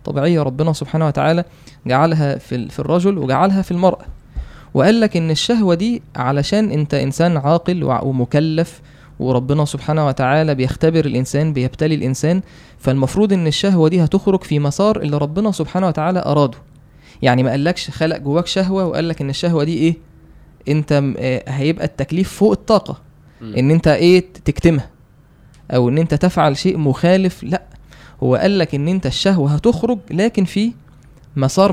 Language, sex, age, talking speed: Arabic, male, 20-39, 145 wpm